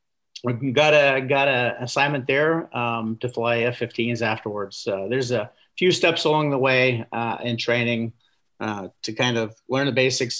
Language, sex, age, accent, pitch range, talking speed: English, male, 50-69, American, 115-140 Hz, 175 wpm